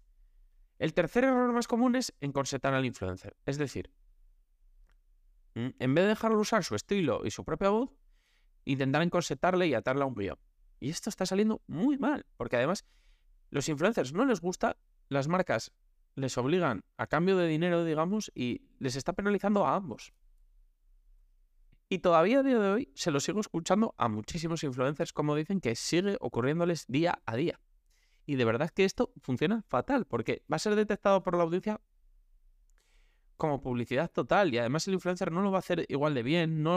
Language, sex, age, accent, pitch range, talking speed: Spanish, male, 20-39, Spanish, 125-190 Hz, 180 wpm